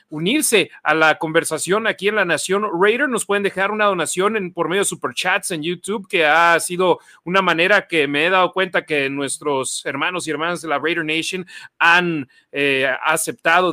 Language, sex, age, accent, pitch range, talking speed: Spanish, male, 40-59, Mexican, 160-215 Hz, 190 wpm